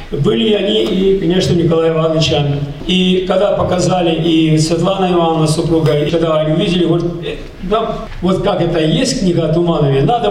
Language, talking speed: Russian, 150 wpm